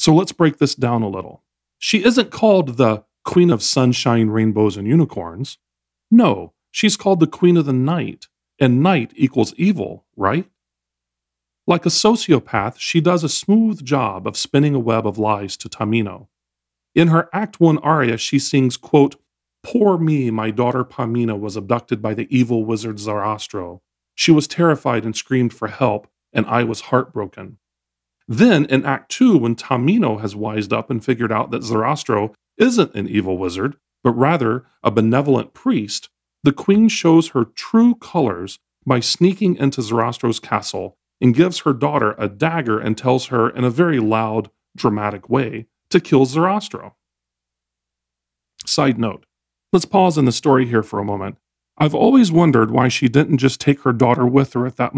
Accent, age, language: American, 40-59, English